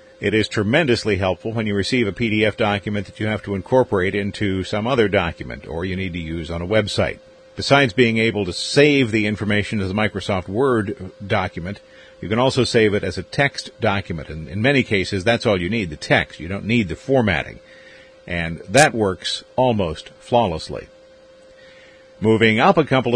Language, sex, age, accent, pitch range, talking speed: English, male, 50-69, American, 100-125 Hz, 185 wpm